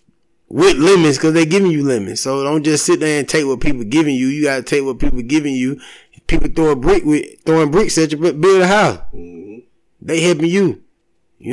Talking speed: 230 wpm